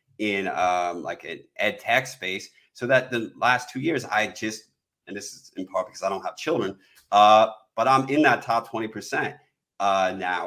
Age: 30-49